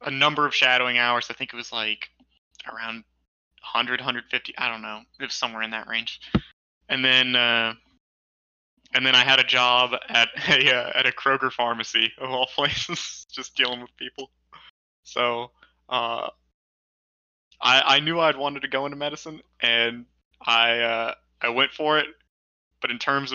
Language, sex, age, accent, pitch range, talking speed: English, male, 20-39, American, 85-135 Hz, 170 wpm